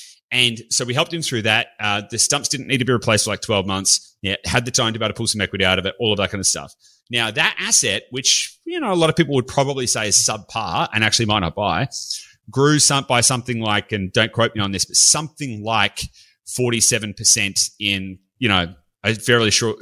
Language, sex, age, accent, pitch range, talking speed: English, male, 30-49, Australian, 105-135 Hz, 240 wpm